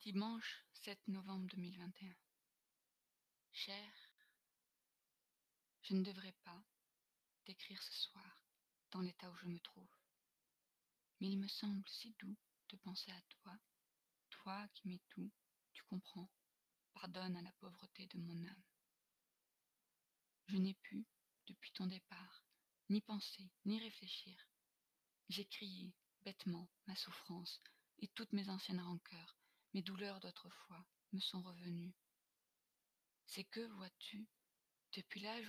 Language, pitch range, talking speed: French, 180-205 Hz, 120 wpm